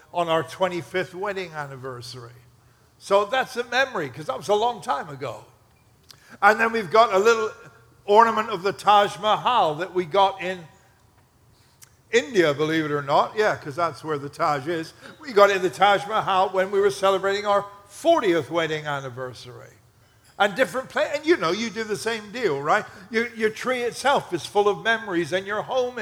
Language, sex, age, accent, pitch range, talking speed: English, male, 60-79, American, 140-225 Hz, 185 wpm